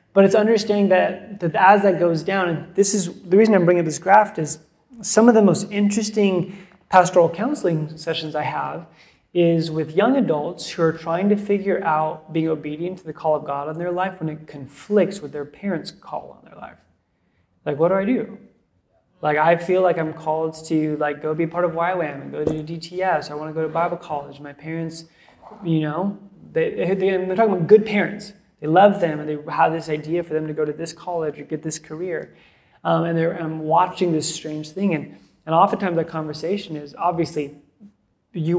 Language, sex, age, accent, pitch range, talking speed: English, male, 20-39, American, 155-190 Hz, 210 wpm